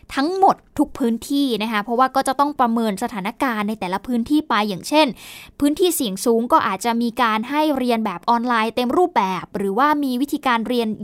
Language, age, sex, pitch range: Thai, 10-29, female, 225-285 Hz